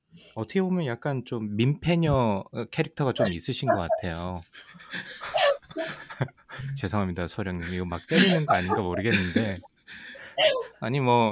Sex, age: male, 20-39